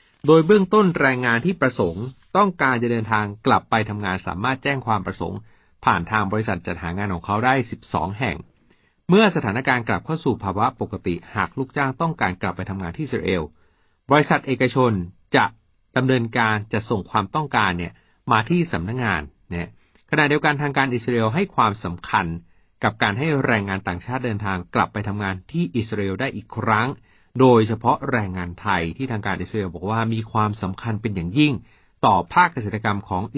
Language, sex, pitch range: Thai, male, 95-130 Hz